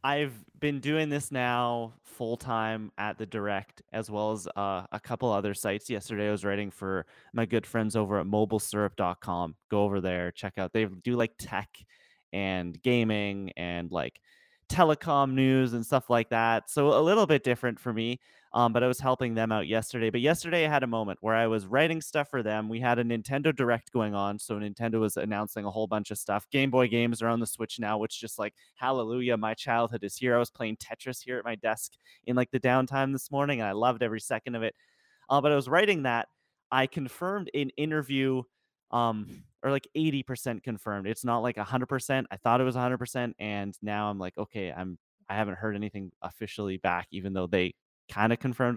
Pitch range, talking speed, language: 105-135 Hz, 210 wpm, English